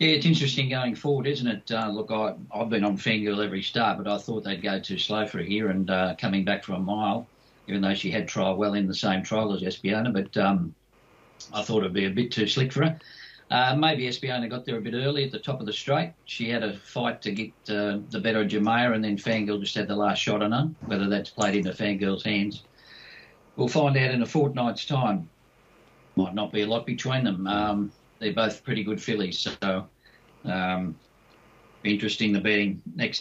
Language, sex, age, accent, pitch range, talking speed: English, male, 50-69, Australian, 100-115 Hz, 225 wpm